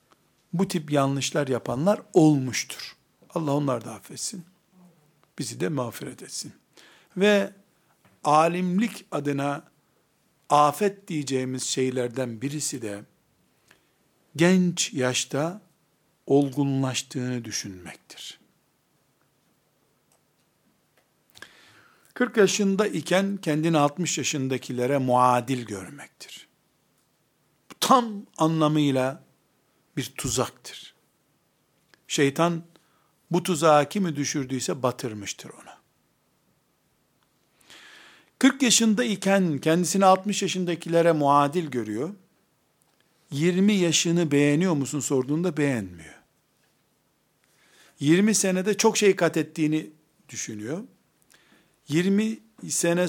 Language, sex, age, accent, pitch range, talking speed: Turkish, male, 60-79, native, 140-185 Hz, 75 wpm